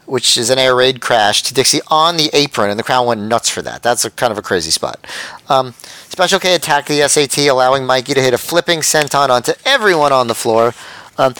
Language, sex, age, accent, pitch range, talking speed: English, male, 30-49, American, 130-160 Hz, 230 wpm